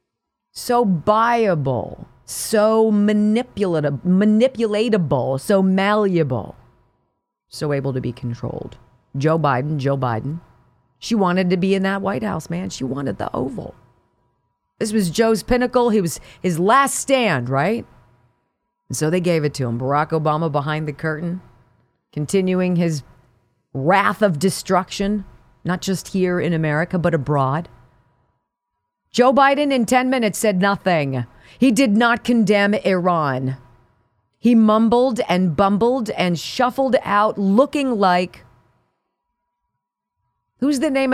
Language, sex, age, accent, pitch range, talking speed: English, female, 40-59, American, 135-225 Hz, 125 wpm